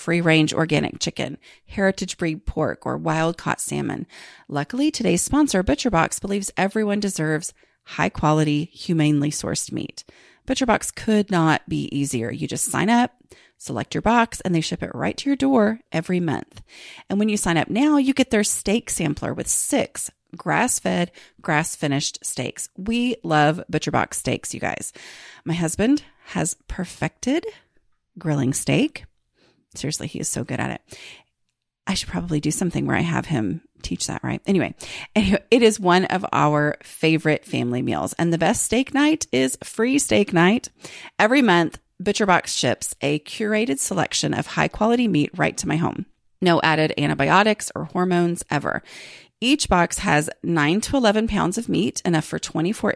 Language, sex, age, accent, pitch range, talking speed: English, female, 30-49, American, 155-225 Hz, 165 wpm